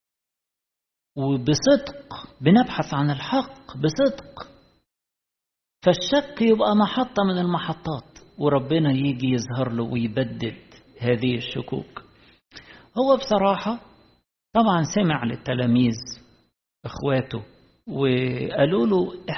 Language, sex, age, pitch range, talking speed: Arabic, male, 50-69, 135-215 Hz, 75 wpm